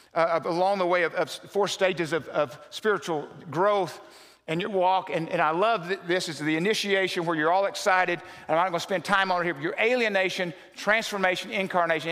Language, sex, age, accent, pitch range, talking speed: English, male, 50-69, American, 155-210 Hz, 205 wpm